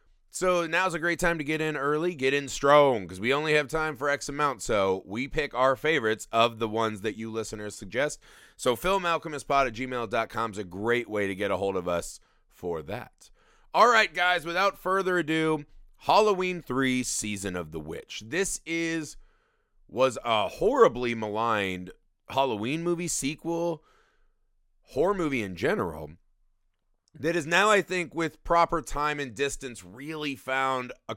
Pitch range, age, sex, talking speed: 110-165 Hz, 30-49, male, 165 wpm